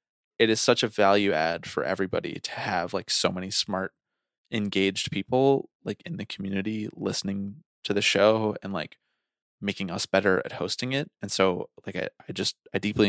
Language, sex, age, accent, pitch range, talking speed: English, male, 20-39, American, 95-115 Hz, 185 wpm